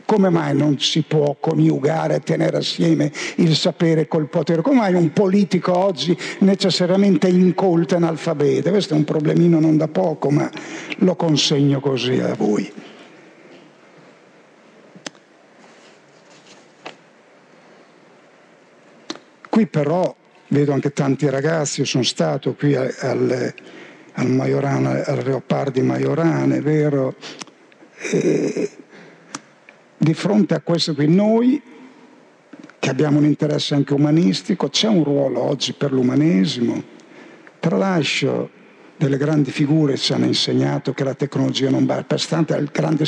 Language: Italian